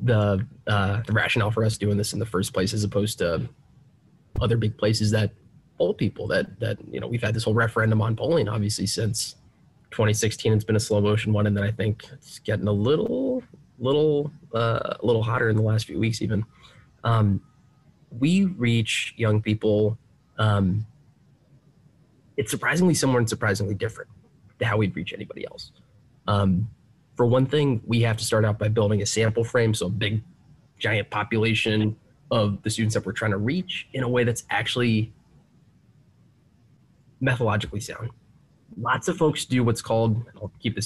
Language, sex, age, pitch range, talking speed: English, male, 20-39, 105-130 Hz, 180 wpm